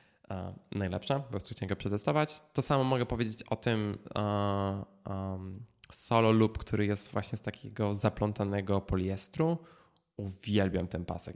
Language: Polish